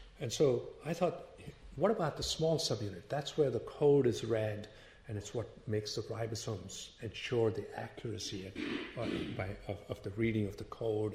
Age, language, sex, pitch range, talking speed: 50-69, English, male, 105-130 Hz, 170 wpm